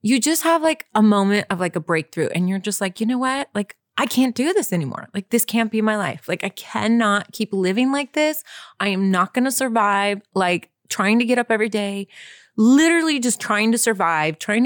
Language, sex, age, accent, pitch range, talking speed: English, female, 30-49, American, 185-225 Hz, 225 wpm